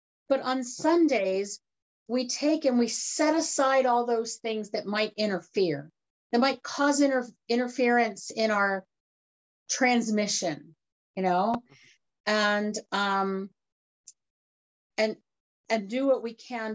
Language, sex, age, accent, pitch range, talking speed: English, female, 40-59, American, 195-245 Hz, 120 wpm